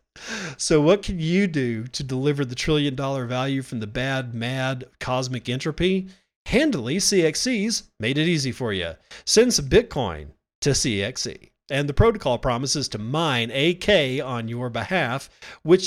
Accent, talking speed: American, 150 wpm